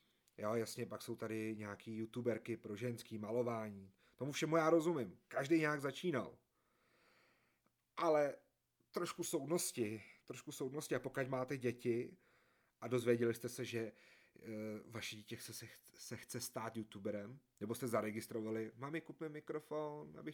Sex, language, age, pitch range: male, Czech, 30-49, 110-135 Hz